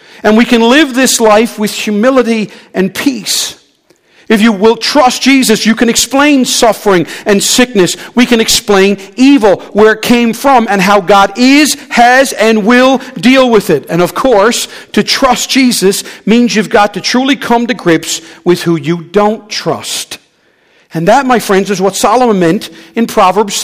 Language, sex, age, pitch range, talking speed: English, male, 50-69, 195-245 Hz, 175 wpm